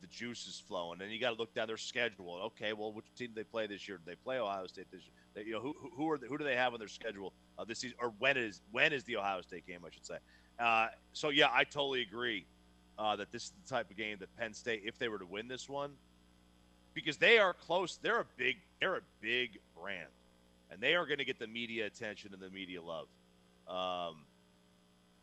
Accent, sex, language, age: American, male, English, 40-59